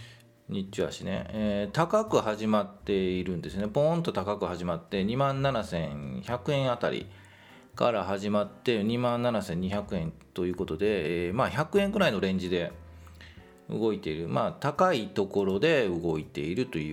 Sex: male